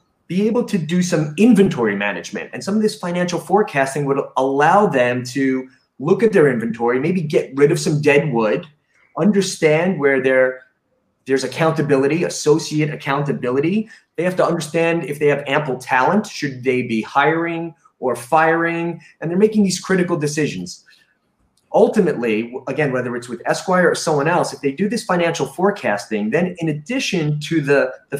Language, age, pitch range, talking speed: English, 30-49, 130-170 Hz, 160 wpm